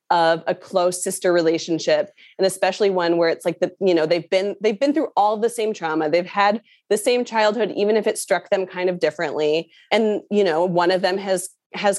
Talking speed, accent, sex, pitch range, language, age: 220 wpm, American, female, 175-215 Hz, English, 20-39